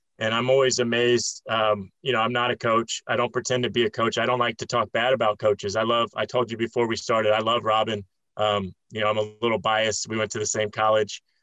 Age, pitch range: 20-39, 105-120 Hz